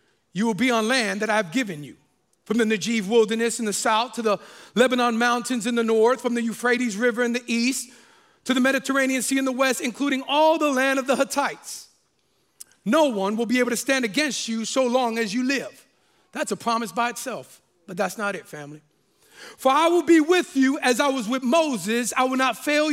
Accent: American